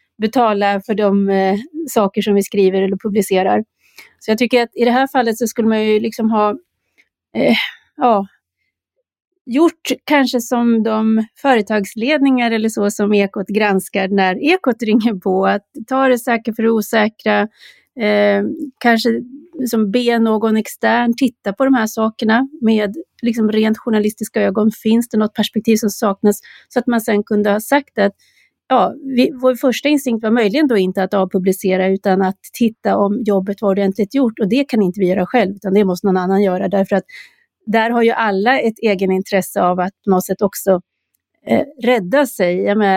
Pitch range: 200-240 Hz